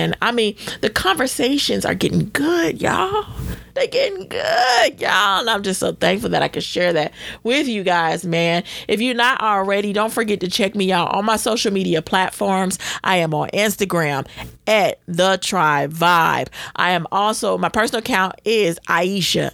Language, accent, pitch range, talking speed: English, American, 170-235 Hz, 175 wpm